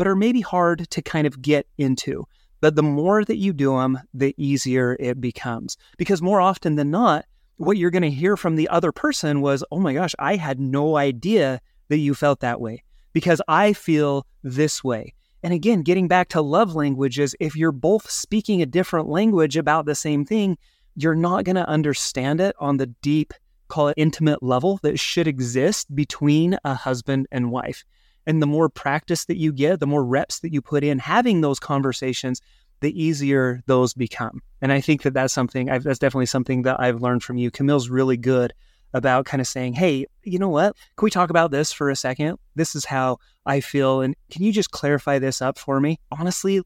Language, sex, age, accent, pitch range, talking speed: English, male, 30-49, American, 135-170 Hz, 205 wpm